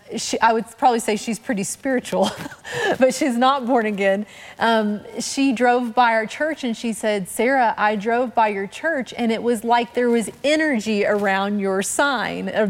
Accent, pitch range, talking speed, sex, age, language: American, 220-265 Hz, 185 wpm, female, 30-49, English